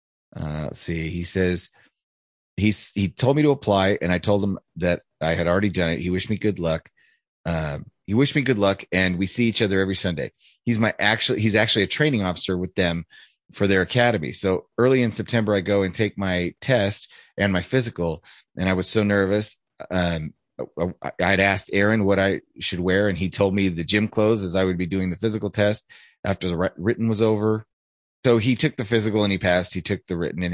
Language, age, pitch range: English, 30-49, 90-105 Hz